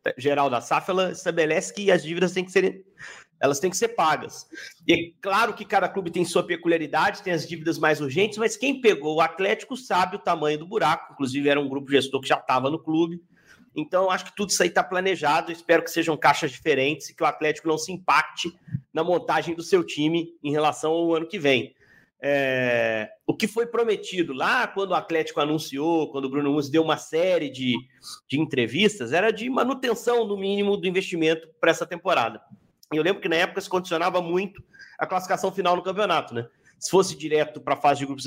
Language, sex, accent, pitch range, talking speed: Portuguese, male, Brazilian, 145-195 Hz, 205 wpm